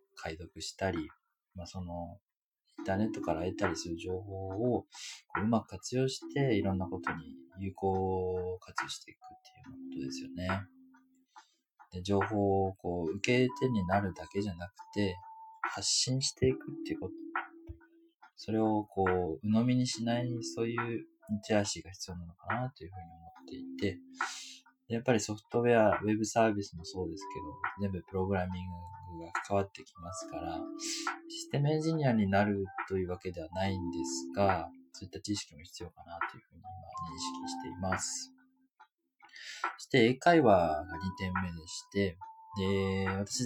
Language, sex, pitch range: Japanese, male, 90-130 Hz